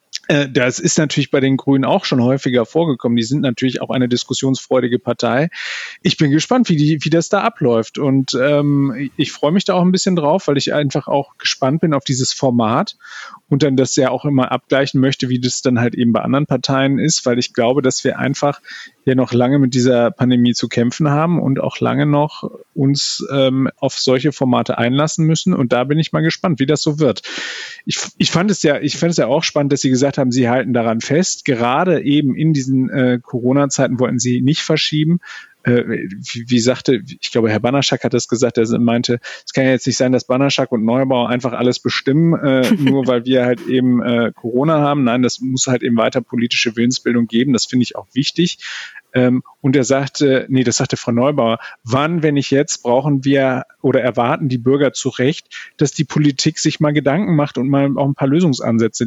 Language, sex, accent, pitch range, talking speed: German, male, German, 125-150 Hz, 205 wpm